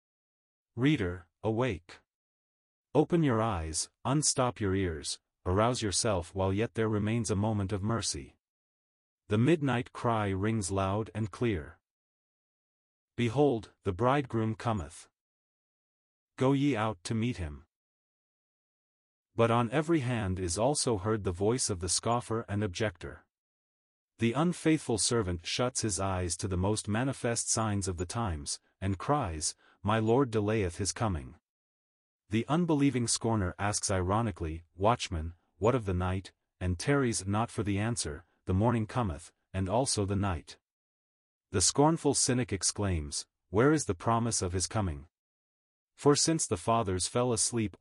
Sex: male